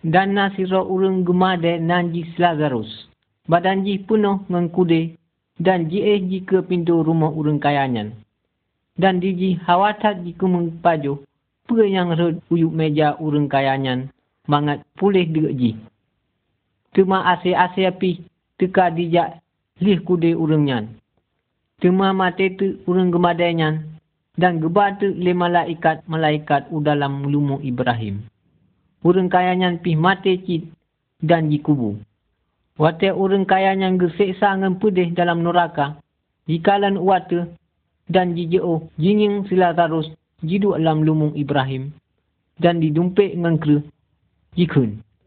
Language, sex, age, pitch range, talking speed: Malay, male, 50-69, 150-185 Hz, 110 wpm